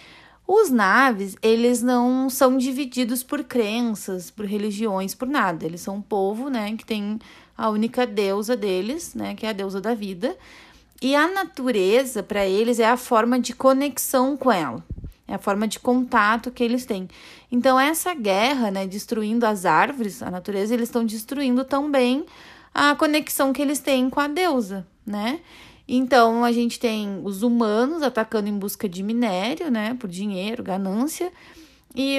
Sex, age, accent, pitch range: female, 20-39, Brazilian, 210-265 Hz